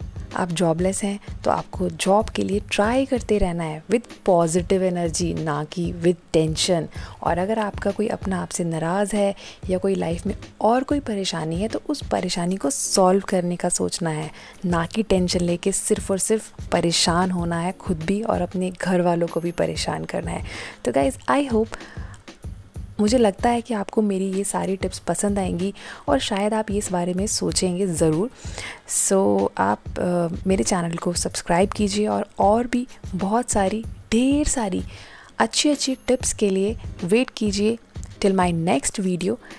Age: 20-39